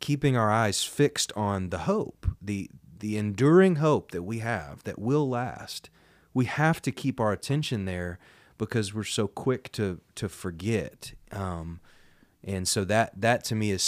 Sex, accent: male, American